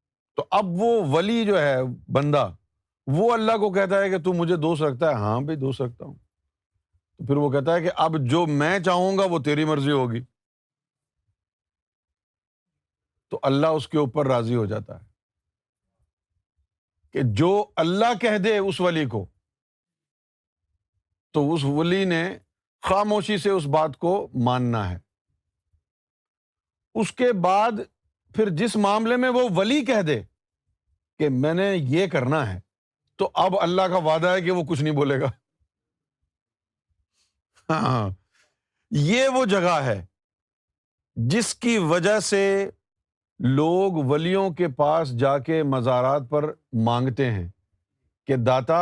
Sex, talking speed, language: male, 140 wpm, Urdu